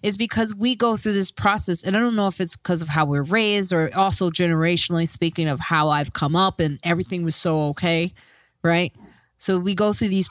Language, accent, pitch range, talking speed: English, American, 160-210 Hz, 220 wpm